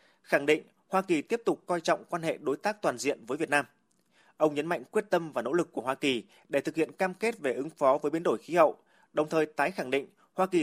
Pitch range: 145-195 Hz